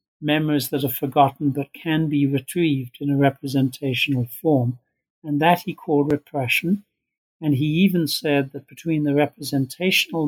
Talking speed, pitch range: 145 wpm, 140-170 Hz